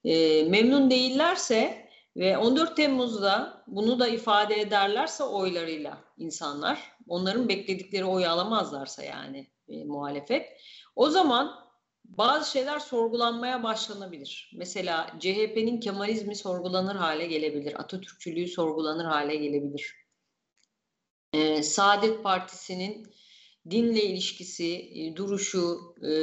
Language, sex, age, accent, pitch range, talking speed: Turkish, female, 40-59, native, 160-225 Hz, 95 wpm